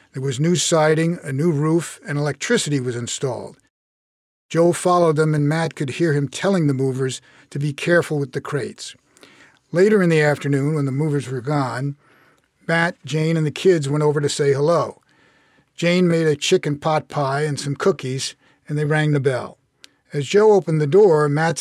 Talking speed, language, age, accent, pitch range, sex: 185 wpm, English, 50-69, American, 145-175 Hz, male